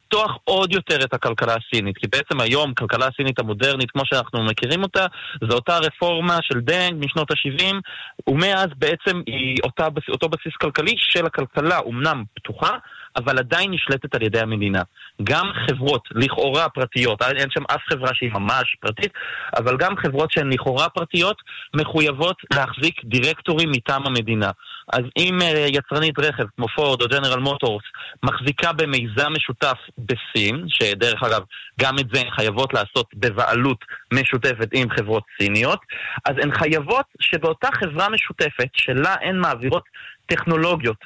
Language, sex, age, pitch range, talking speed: Hebrew, male, 30-49, 130-170 Hz, 145 wpm